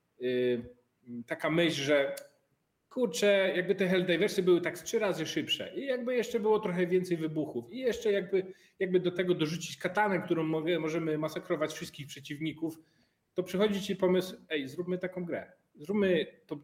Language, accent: Polish, native